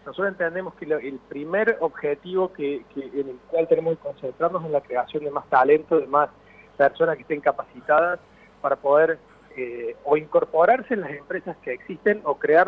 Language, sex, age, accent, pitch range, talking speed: Spanish, male, 30-49, Argentinian, 140-195 Hz, 180 wpm